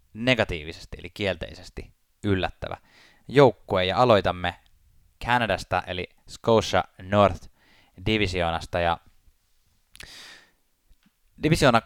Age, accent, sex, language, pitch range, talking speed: 20-39, native, male, Finnish, 85-105 Hz, 70 wpm